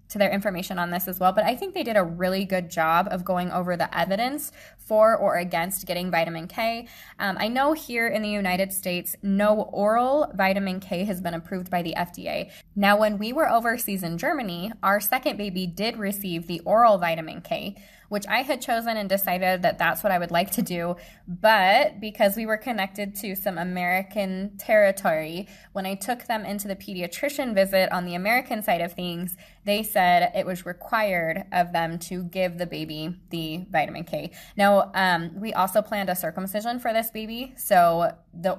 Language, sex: English, female